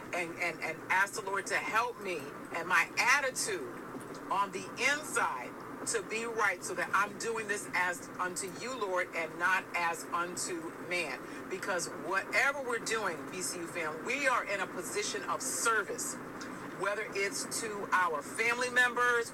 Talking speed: 160 wpm